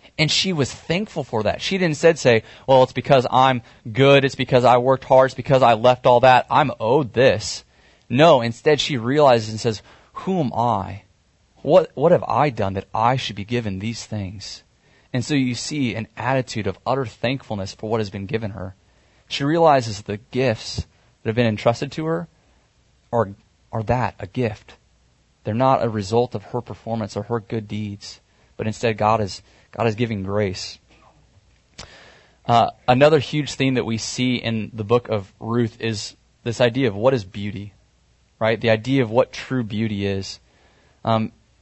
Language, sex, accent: English, male, American